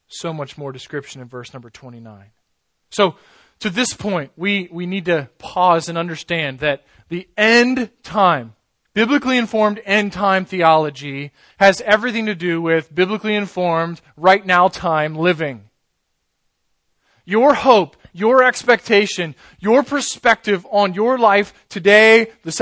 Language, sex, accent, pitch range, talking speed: English, male, American, 145-205 Hz, 135 wpm